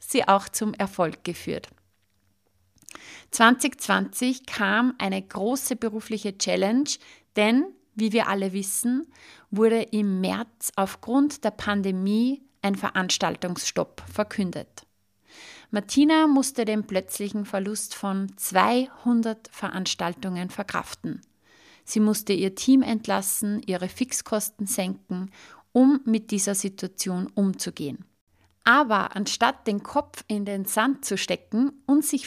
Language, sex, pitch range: German, female, 195-245 Hz